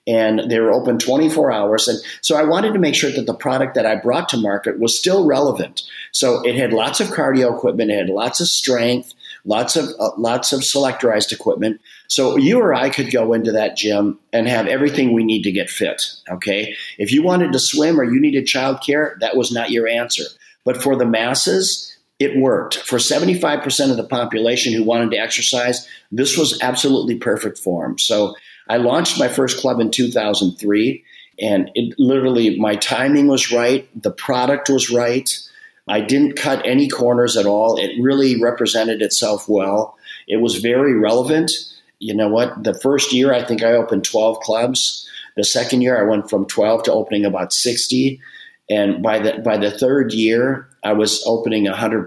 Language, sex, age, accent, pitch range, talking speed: English, male, 50-69, American, 110-135 Hz, 190 wpm